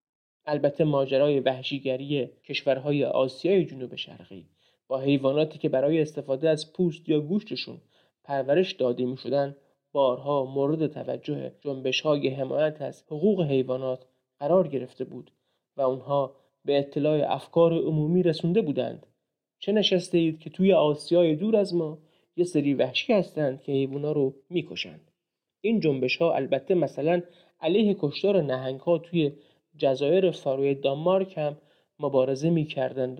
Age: 30-49